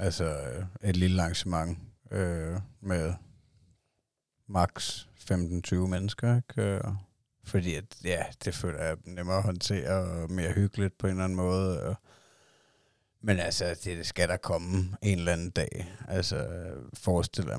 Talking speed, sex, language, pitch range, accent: 135 wpm, male, Danish, 90-100 Hz, native